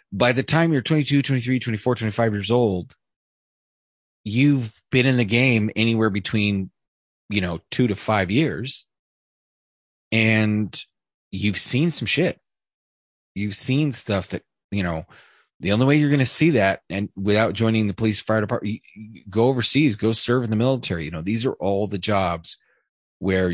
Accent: American